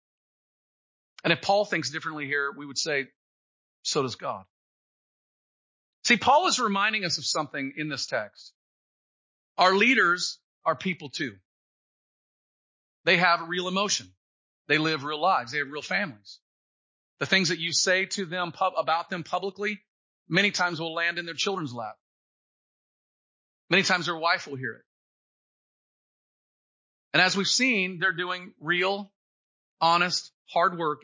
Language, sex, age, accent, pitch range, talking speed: English, male, 40-59, American, 155-205 Hz, 145 wpm